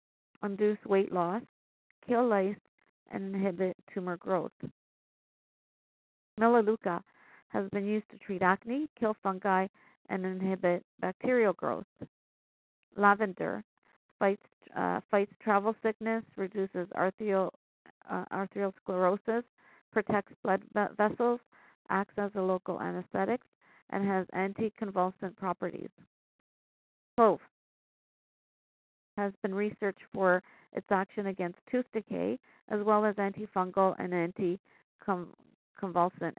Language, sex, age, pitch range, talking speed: English, female, 50-69, 185-220 Hz, 100 wpm